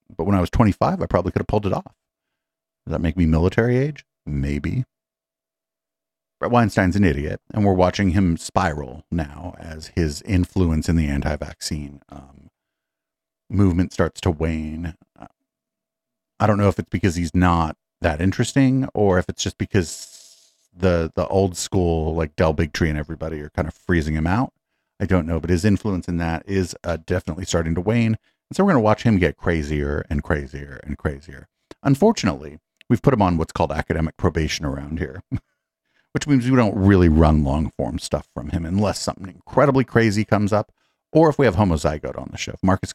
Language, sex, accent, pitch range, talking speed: English, male, American, 80-100 Hz, 190 wpm